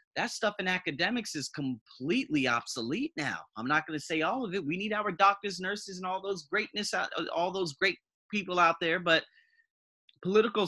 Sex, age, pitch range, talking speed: male, 30-49, 125-195 Hz, 185 wpm